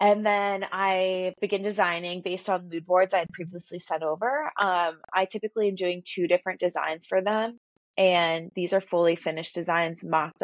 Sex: female